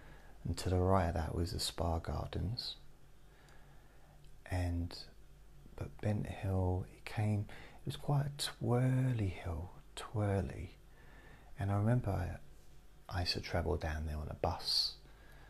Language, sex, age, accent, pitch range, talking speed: English, male, 30-49, British, 85-100 Hz, 130 wpm